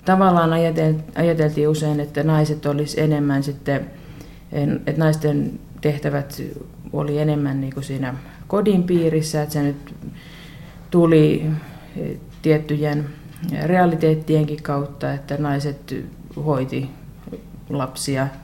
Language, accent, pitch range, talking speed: Finnish, native, 145-165 Hz, 95 wpm